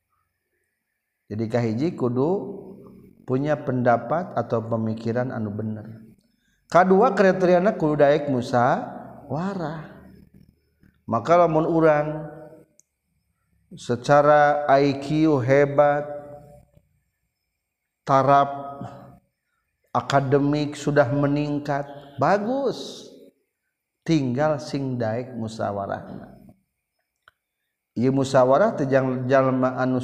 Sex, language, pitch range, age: male, Indonesian, 125-155 Hz, 50-69